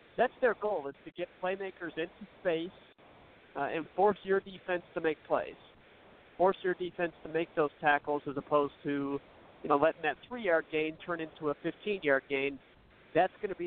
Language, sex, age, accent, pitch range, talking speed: English, male, 50-69, American, 145-170 Hz, 185 wpm